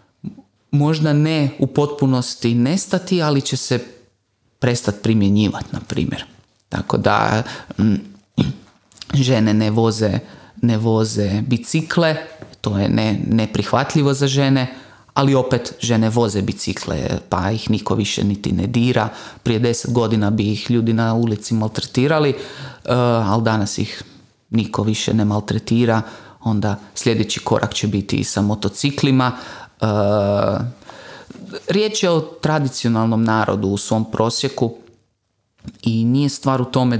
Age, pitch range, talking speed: 30-49, 105-130 Hz, 125 wpm